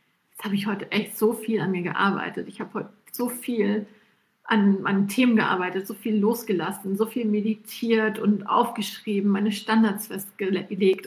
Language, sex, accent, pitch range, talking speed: German, female, German, 200-235 Hz, 155 wpm